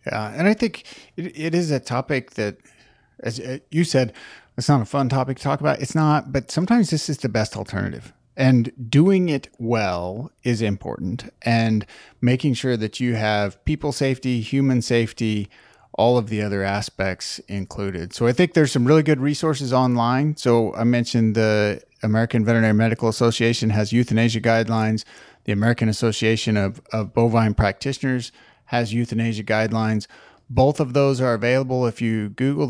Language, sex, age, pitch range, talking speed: English, male, 30-49, 110-135 Hz, 165 wpm